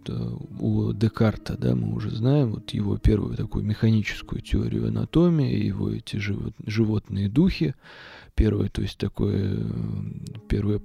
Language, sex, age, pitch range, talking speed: Russian, male, 20-39, 105-120 Hz, 120 wpm